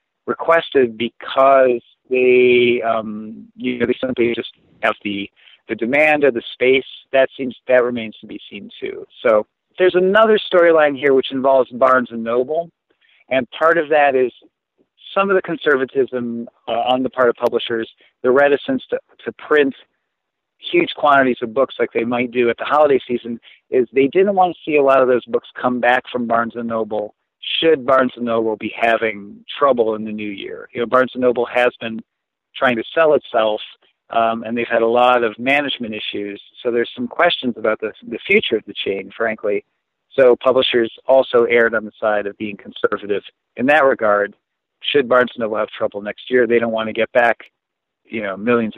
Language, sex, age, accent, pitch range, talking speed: English, male, 50-69, American, 115-145 Hz, 190 wpm